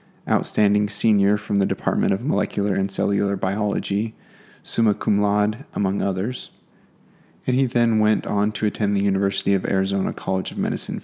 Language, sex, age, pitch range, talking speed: English, male, 20-39, 100-110 Hz, 160 wpm